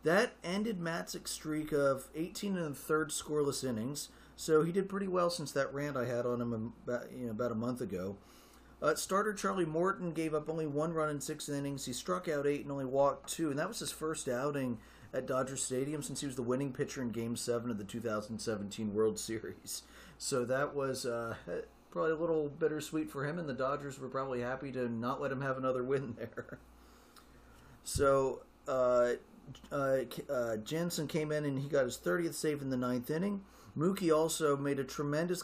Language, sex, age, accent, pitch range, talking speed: English, male, 40-59, American, 120-155 Hz, 200 wpm